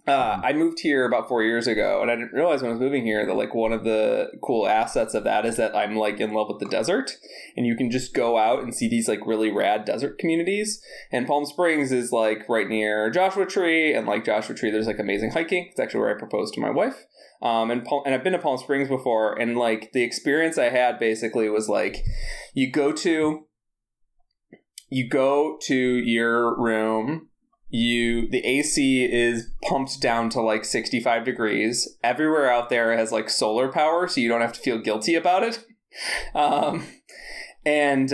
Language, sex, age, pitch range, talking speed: English, male, 20-39, 115-155 Hz, 200 wpm